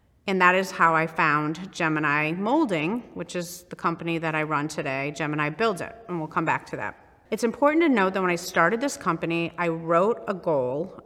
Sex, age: female, 30-49